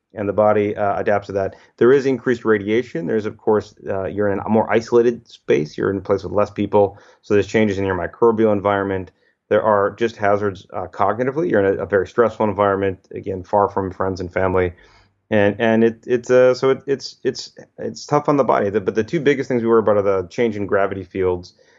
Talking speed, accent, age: 230 wpm, American, 30-49